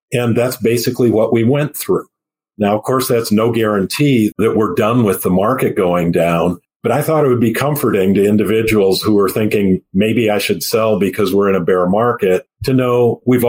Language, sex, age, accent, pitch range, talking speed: English, male, 50-69, American, 95-120 Hz, 205 wpm